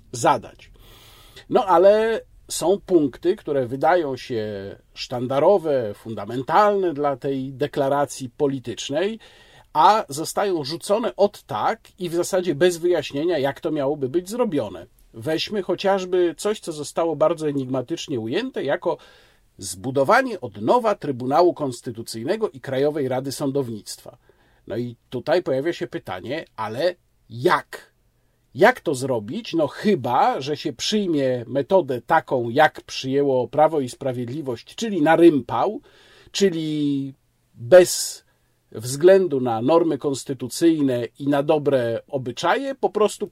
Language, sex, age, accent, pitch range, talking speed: Polish, male, 50-69, native, 130-185 Hz, 120 wpm